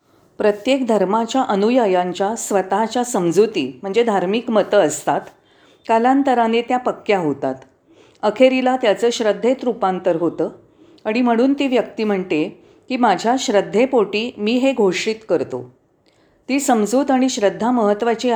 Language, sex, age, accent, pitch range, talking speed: Marathi, female, 40-59, native, 190-245 Hz, 115 wpm